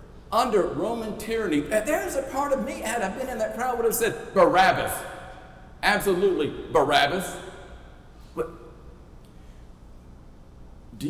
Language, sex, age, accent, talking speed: English, male, 50-69, American, 125 wpm